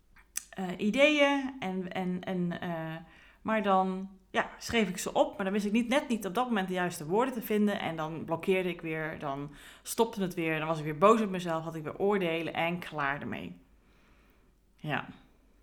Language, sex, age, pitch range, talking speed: Dutch, female, 30-49, 170-210 Hz, 200 wpm